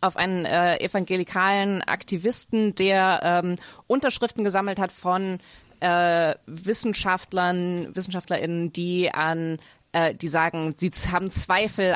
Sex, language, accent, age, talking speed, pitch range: female, German, German, 20-39, 110 wpm, 175-210 Hz